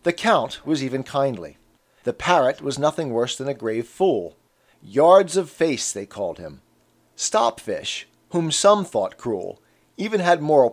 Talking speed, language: 155 wpm, English